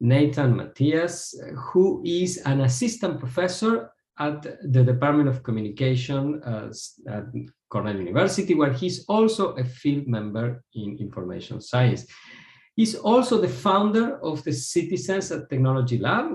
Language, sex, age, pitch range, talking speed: English, male, 50-69, 115-160 Hz, 130 wpm